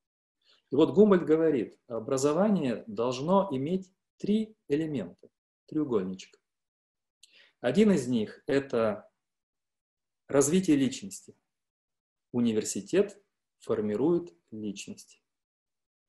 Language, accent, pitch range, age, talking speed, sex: Russian, native, 120-190 Hz, 40-59, 70 wpm, male